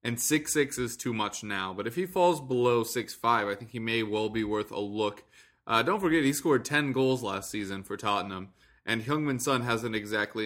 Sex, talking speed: male, 210 wpm